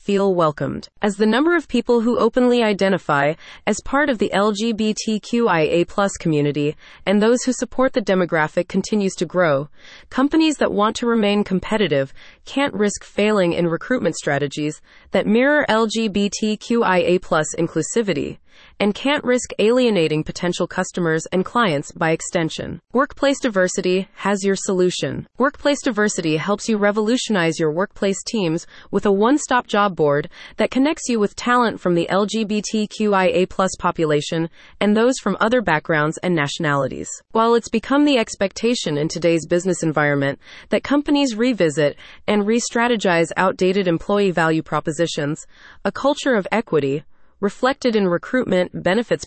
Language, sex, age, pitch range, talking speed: English, female, 30-49, 170-230 Hz, 135 wpm